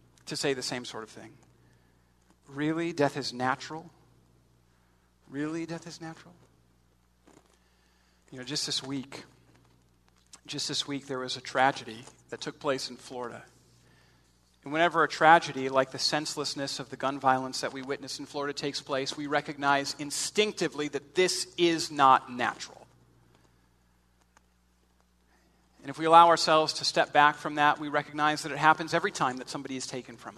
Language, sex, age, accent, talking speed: English, male, 40-59, American, 160 wpm